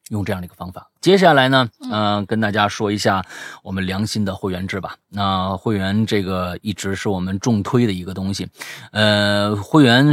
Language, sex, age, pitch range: Chinese, male, 30-49, 95-120 Hz